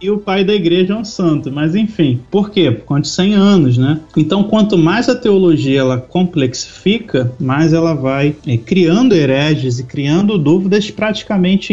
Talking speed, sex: 170 wpm, male